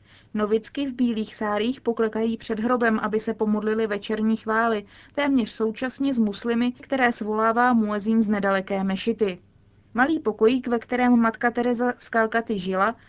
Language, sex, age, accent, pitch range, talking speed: Czech, female, 20-39, native, 205-245 Hz, 140 wpm